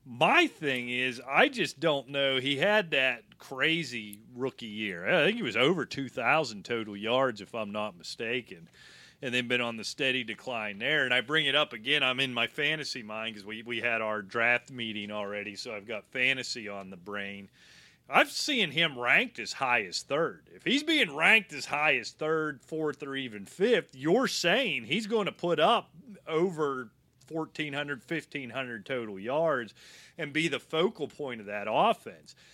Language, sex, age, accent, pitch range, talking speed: English, male, 30-49, American, 120-160 Hz, 185 wpm